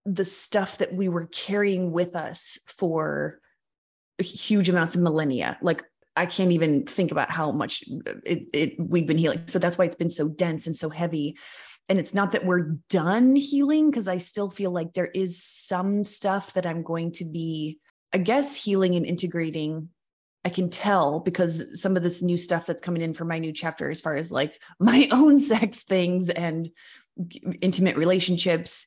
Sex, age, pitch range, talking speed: female, 20-39, 165-195 Hz, 185 wpm